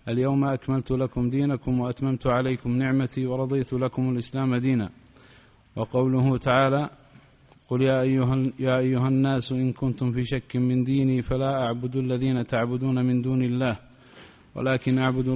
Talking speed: 125 wpm